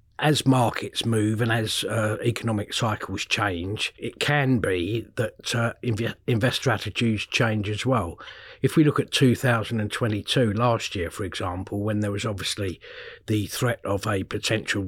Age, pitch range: 50-69, 100-115 Hz